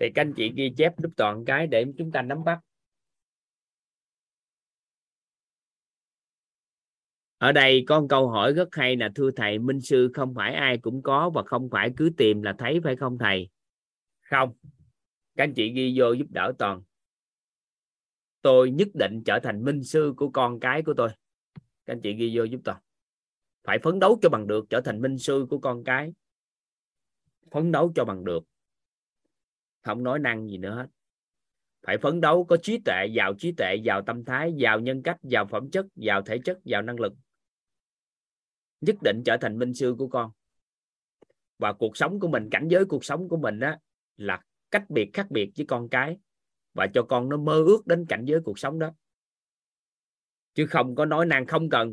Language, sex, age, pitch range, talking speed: Vietnamese, male, 20-39, 115-155 Hz, 190 wpm